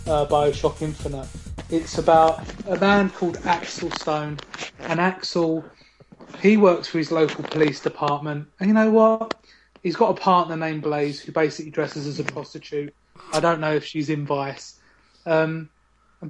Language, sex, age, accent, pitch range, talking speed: English, male, 30-49, British, 150-185 Hz, 160 wpm